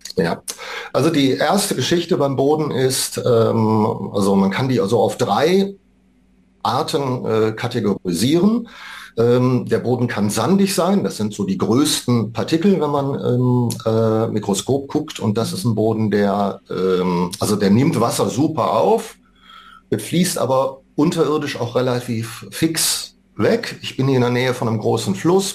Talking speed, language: 160 wpm, German